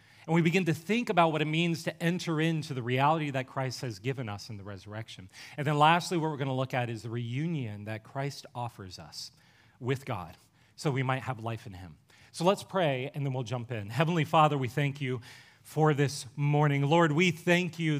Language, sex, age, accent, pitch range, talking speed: English, male, 30-49, American, 130-170 Hz, 225 wpm